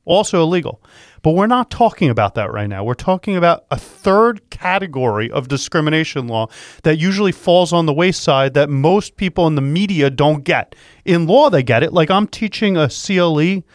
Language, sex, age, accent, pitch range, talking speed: English, male, 30-49, American, 145-205 Hz, 190 wpm